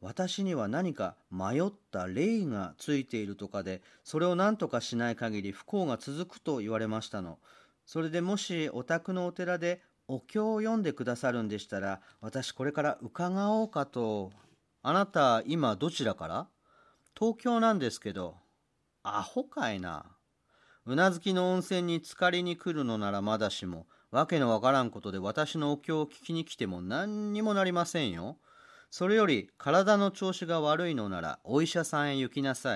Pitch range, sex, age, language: 115-180 Hz, male, 40-59, Japanese